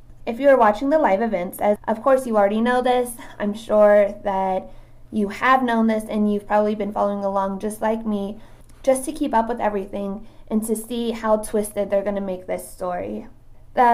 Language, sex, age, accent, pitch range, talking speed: English, female, 20-39, American, 190-230 Hz, 200 wpm